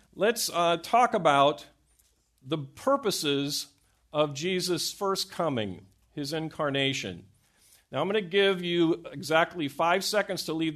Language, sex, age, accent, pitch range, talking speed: English, male, 50-69, American, 120-175 Hz, 130 wpm